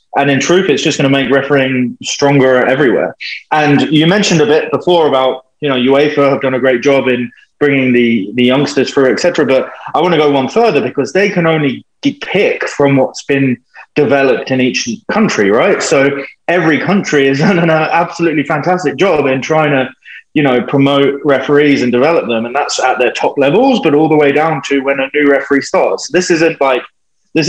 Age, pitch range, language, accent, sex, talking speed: 20-39, 130-160 Hz, English, British, male, 205 wpm